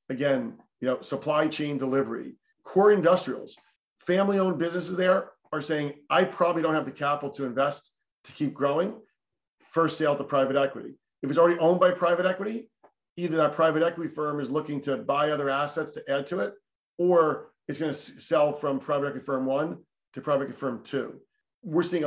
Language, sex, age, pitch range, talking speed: English, male, 40-59, 140-165 Hz, 185 wpm